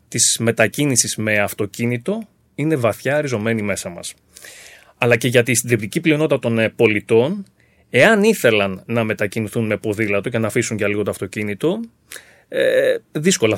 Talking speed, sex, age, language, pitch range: 135 wpm, male, 30-49, Greek, 115-180 Hz